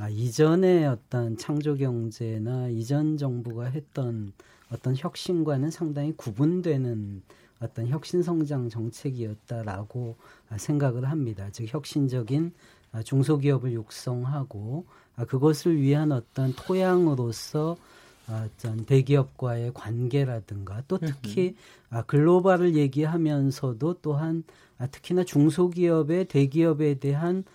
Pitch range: 120-160 Hz